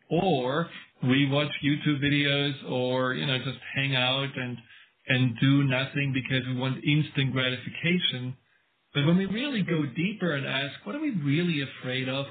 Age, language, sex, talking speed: 40-59, English, male, 165 wpm